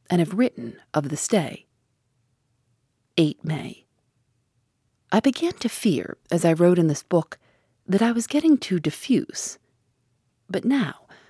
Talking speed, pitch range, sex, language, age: 140 wpm, 140-210 Hz, female, English, 40-59